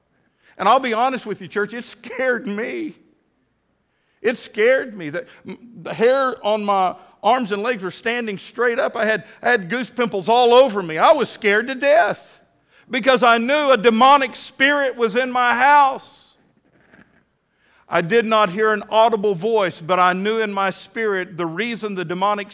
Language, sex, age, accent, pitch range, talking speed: English, male, 50-69, American, 165-240 Hz, 170 wpm